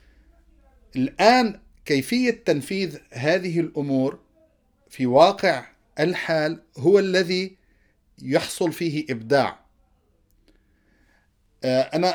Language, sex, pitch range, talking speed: Arabic, male, 125-175 Hz, 70 wpm